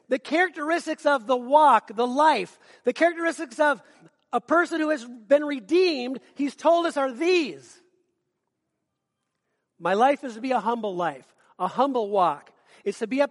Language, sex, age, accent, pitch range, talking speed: English, male, 40-59, American, 230-305 Hz, 160 wpm